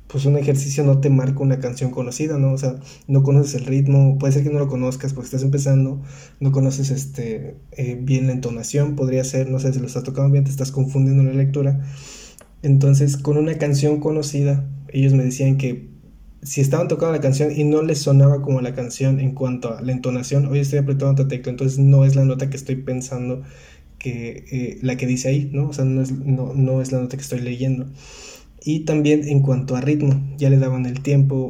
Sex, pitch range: male, 130-145 Hz